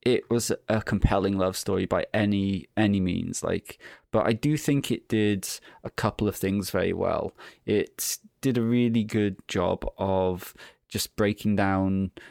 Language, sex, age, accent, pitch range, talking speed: English, male, 20-39, British, 95-110 Hz, 160 wpm